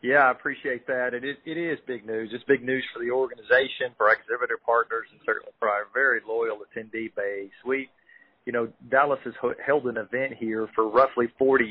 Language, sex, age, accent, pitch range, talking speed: English, male, 40-59, American, 110-135 Hz, 205 wpm